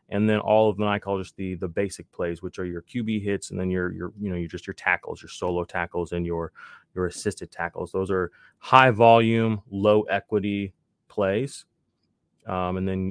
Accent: American